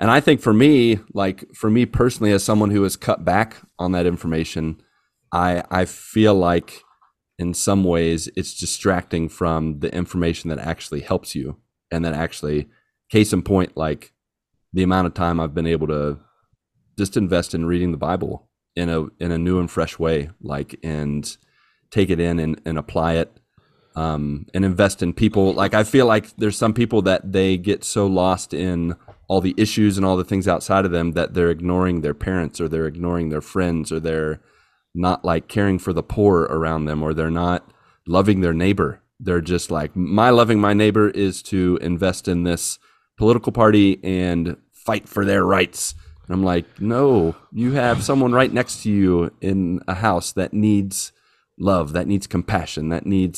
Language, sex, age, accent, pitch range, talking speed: English, male, 30-49, American, 85-100 Hz, 190 wpm